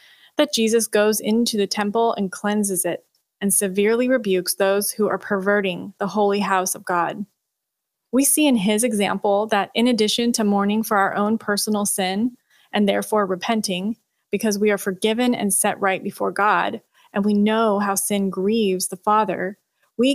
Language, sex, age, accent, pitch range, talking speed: English, female, 20-39, American, 195-220 Hz, 170 wpm